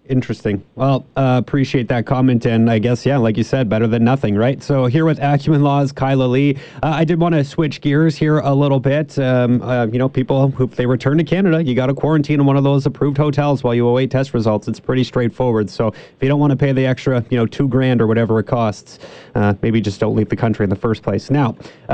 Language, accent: English, American